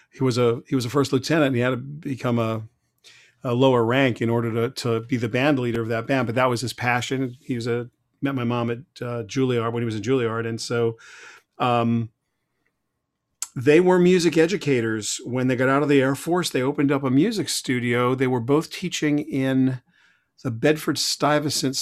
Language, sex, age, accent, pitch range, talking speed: English, male, 40-59, American, 125-150 Hz, 205 wpm